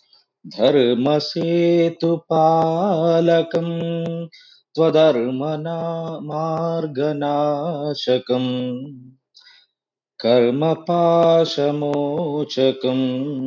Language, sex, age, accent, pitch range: Telugu, male, 30-49, native, 130-165 Hz